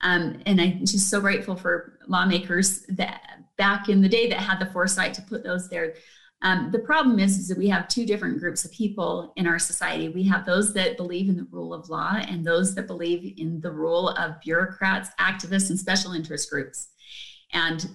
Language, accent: English, American